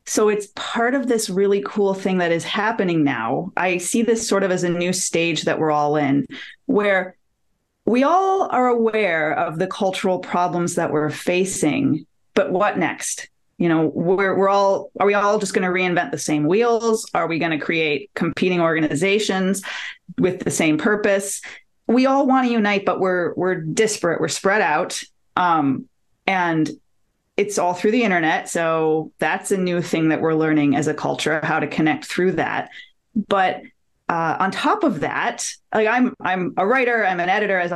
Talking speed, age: 185 wpm, 30-49